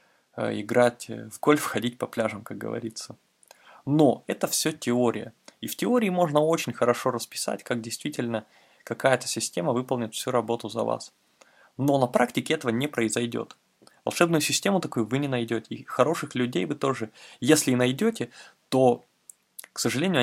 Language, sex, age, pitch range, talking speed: Russian, male, 20-39, 115-140 Hz, 150 wpm